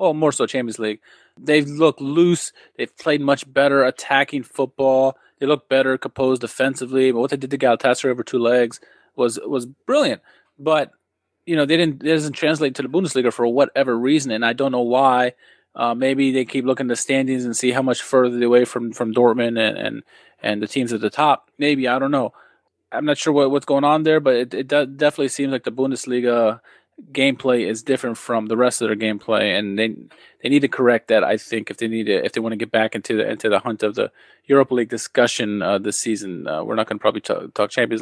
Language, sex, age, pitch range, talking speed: English, male, 20-39, 115-140 Hz, 230 wpm